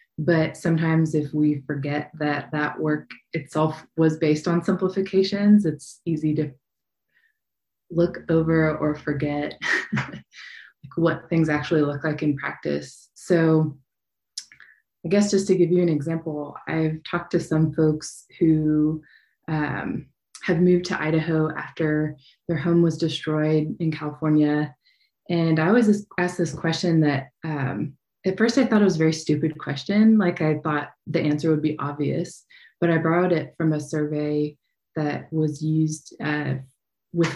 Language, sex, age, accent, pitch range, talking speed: English, female, 20-39, American, 150-170 Hz, 150 wpm